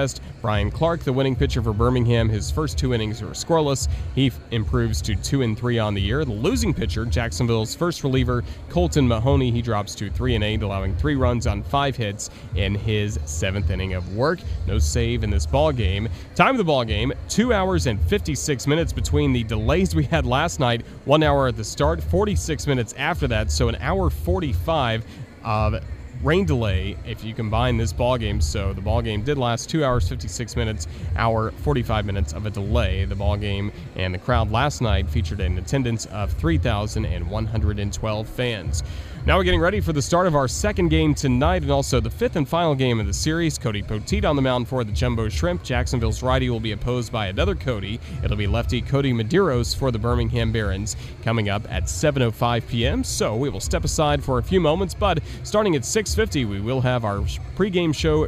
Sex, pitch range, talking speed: male, 100-125 Hz, 200 wpm